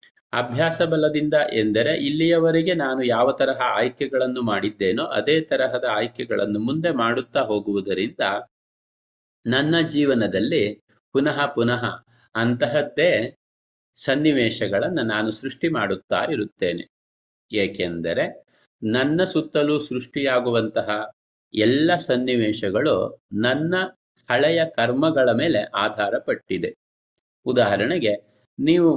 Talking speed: 80 wpm